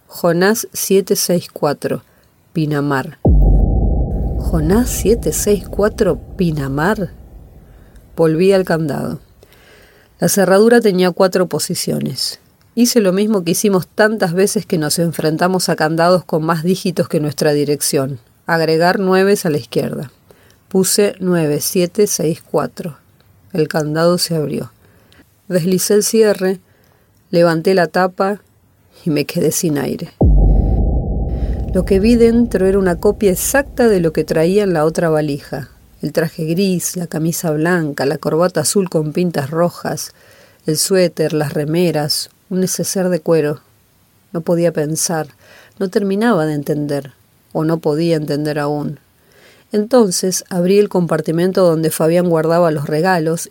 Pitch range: 150-190 Hz